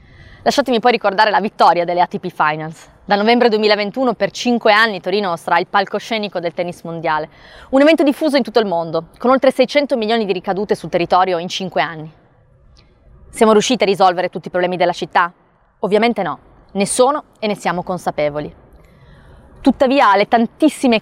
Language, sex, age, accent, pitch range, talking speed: Italian, female, 20-39, native, 180-235 Hz, 170 wpm